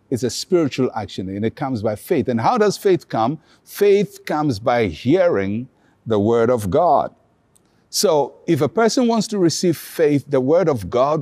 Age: 50-69